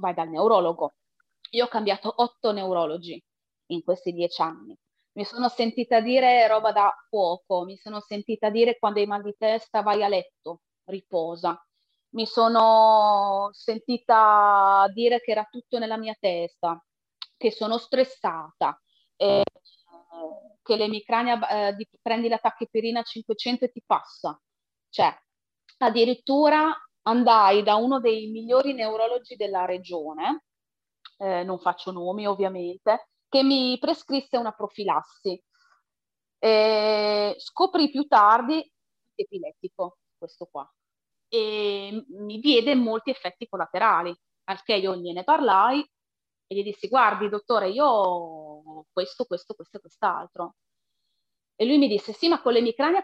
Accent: native